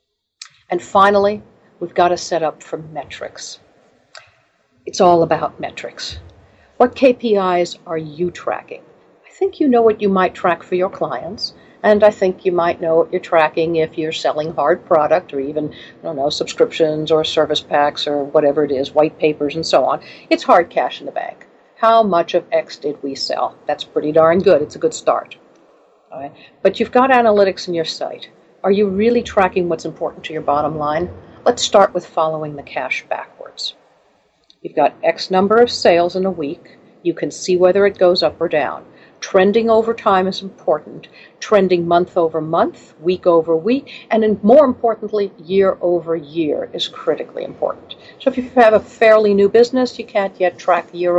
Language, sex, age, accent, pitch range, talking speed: English, female, 50-69, American, 160-215 Hz, 190 wpm